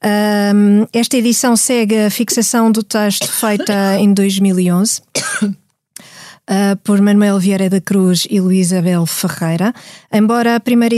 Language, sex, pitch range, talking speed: Portuguese, female, 185-225 Hz, 120 wpm